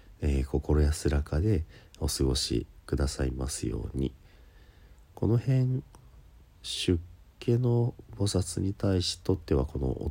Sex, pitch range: male, 75-90 Hz